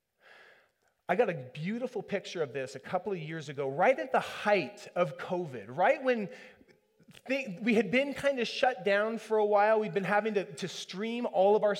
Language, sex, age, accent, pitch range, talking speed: English, male, 30-49, American, 165-225 Hz, 205 wpm